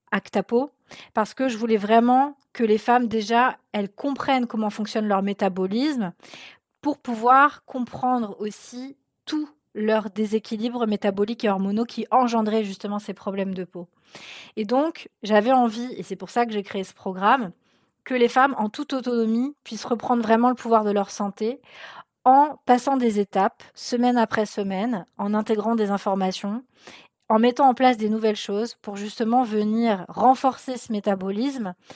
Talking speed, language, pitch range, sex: 160 wpm, French, 205-250 Hz, female